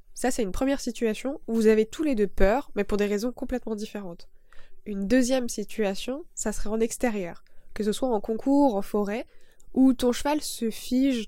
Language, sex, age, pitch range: French, female, 20-39, 210-255 Hz